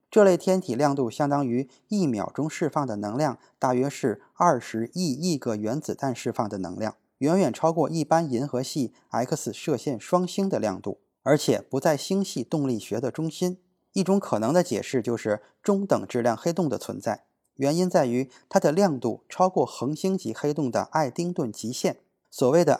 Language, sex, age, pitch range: Chinese, male, 20-39, 125-180 Hz